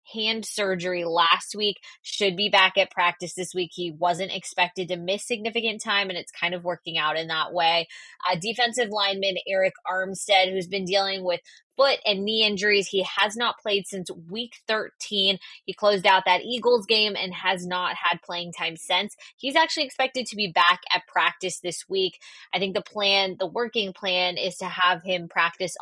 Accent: American